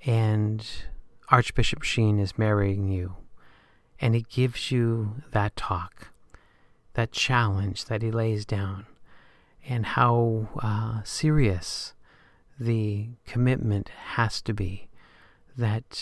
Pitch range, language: 105-120 Hz, English